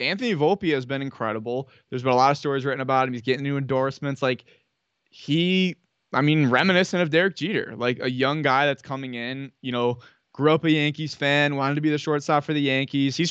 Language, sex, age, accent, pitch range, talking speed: English, male, 20-39, American, 130-155 Hz, 220 wpm